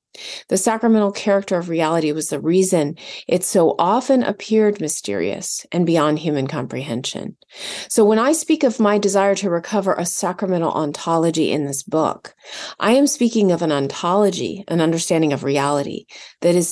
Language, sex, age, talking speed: English, female, 30-49, 160 wpm